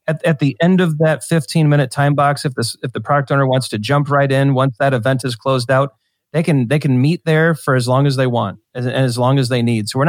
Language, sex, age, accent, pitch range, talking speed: English, male, 30-49, American, 130-155 Hz, 275 wpm